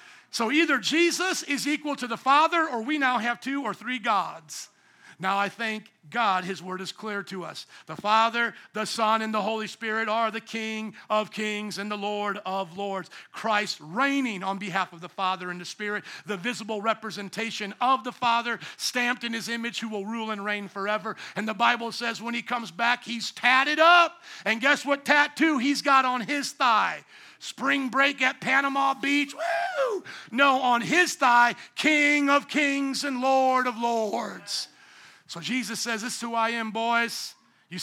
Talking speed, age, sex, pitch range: 185 wpm, 50-69, male, 210-255 Hz